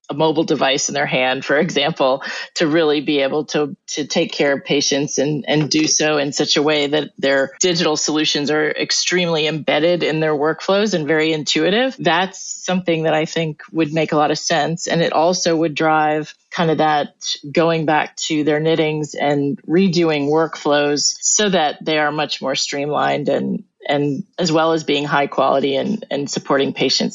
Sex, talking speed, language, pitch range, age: female, 190 wpm, English, 145-170 Hz, 30-49